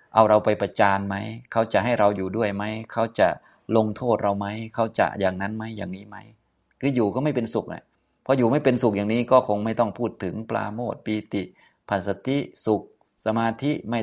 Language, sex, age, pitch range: Thai, male, 20-39, 90-110 Hz